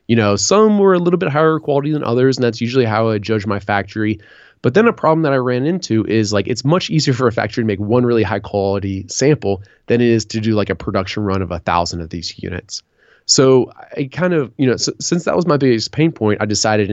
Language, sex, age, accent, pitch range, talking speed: English, male, 20-39, American, 100-130 Hz, 255 wpm